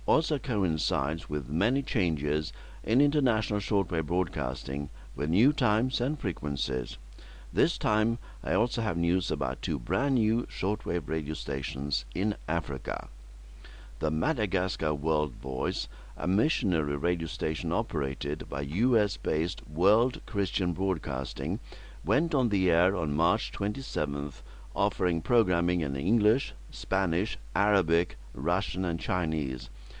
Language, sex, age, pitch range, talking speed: English, male, 60-79, 70-105 Hz, 120 wpm